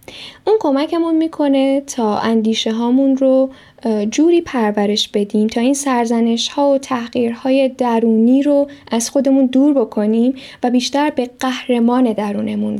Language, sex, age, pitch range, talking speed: Persian, female, 10-29, 230-275 Hz, 125 wpm